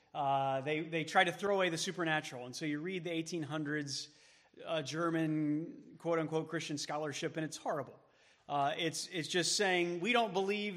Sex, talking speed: male, 175 wpm